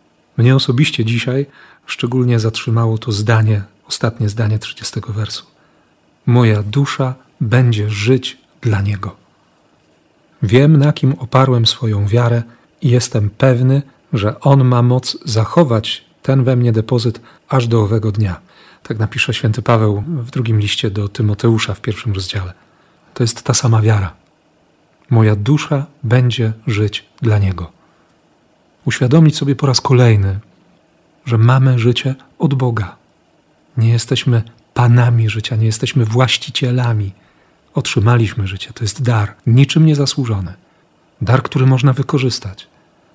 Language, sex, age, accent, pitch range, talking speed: Polish, male, 40-59, native, 110-135 Hz, 125 wpm